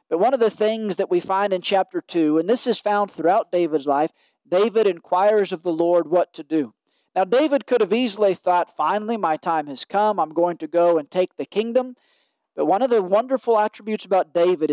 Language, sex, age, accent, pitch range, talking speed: English, male, 40-59, American, 170-210 Hz, 215 wpm